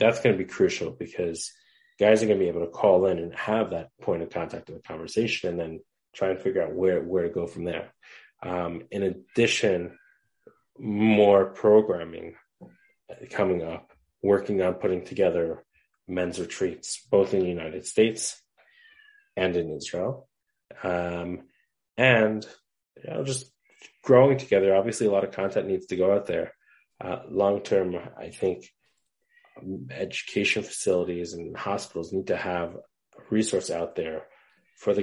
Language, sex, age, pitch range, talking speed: English, male, 30-49, 90-120 Hz, 150 wpm